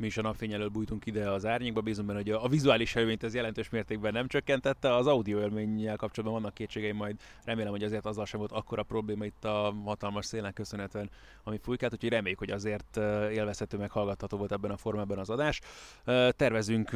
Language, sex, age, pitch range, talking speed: Hungarian, male, 20-39, 105-120 Hz, 195 wpm